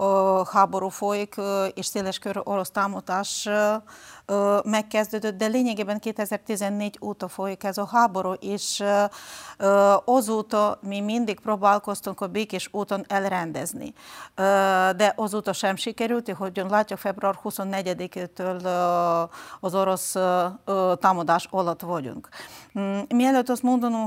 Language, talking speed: Hungarian, 100 wpm